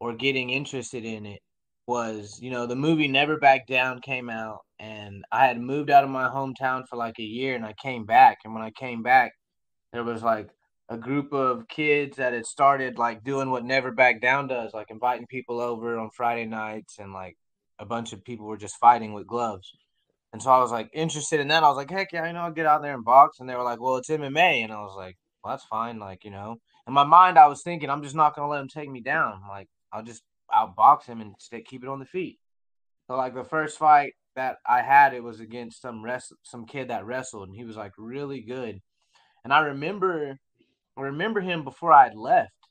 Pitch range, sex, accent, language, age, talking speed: 115-140 Hz, male, American, English, 20-39, 240 wpm